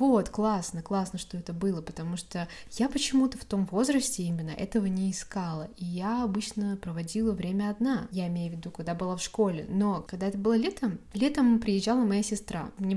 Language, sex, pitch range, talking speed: Russian, female, 180-220 Hz, 190 wpm